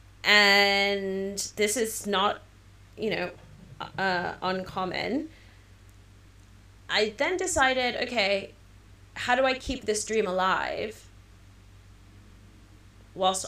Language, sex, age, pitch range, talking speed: English, female, 20-39, 175-215 Hz, 90 wpm